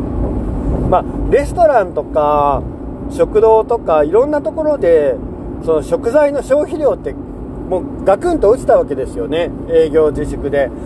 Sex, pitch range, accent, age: male, 175-295 Hz, native, 40-59